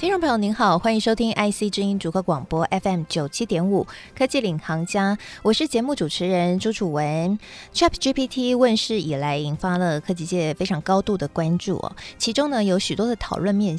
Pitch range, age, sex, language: 170-230 Hz, 20-39, female, Chinese